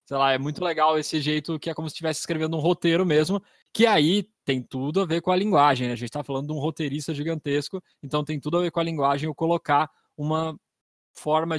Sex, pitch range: male, 140-165 Hz